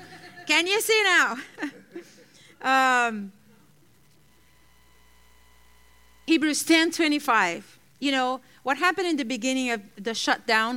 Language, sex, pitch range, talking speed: English, female, 220-305 Hz, 100 wpm